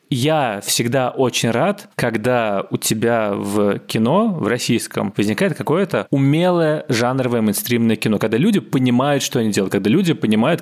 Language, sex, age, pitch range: Russian, male, 20-39, 105-140 Hz